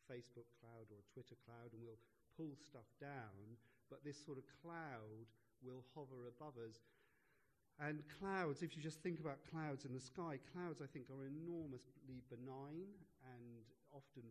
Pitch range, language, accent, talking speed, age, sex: 115-140 Hz, English, British, 160 wpm, 40-59, male